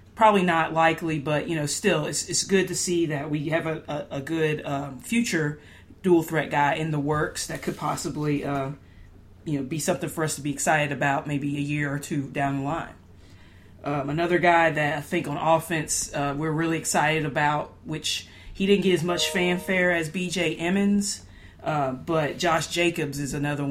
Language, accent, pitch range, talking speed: English, American, 145-170 Hz, 195 wpm